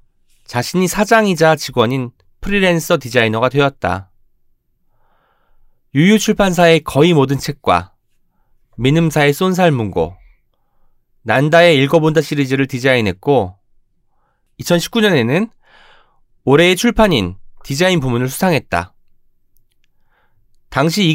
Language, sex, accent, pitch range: Korean, male, native, 110-170 Hz